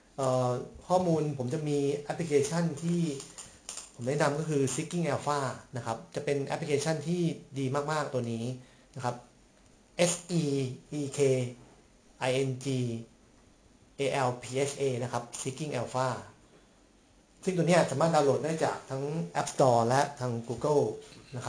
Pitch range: 125-150 Hz